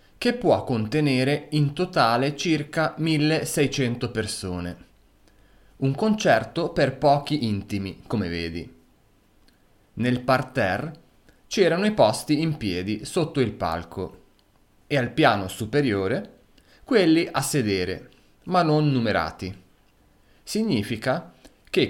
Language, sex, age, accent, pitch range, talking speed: Italian, male, 30-49, native, 105-155 Hz, 100 wpm